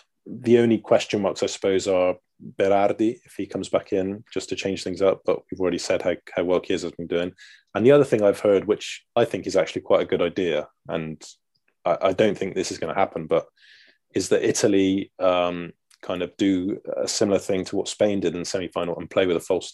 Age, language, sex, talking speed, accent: 20-39, English, male, 235 wpm, British